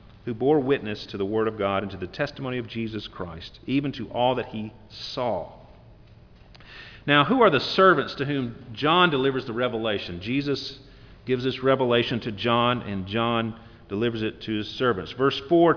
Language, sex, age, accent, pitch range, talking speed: English, male, 40-59, American, 110-150 Hz, 180 wpm